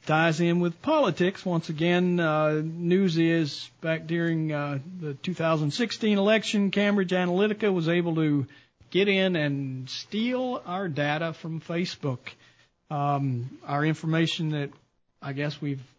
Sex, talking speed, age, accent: male, 130 wpm, 40-59, American